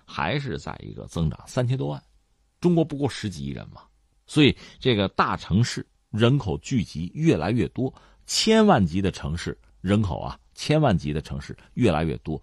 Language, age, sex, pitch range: Chinese, 50-69, male, 90-145 Hz